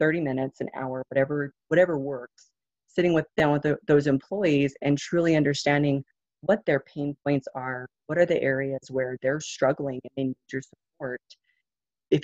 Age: 30-49